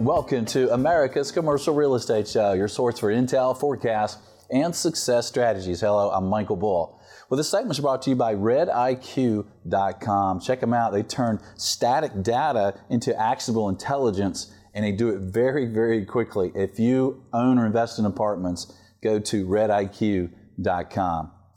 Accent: American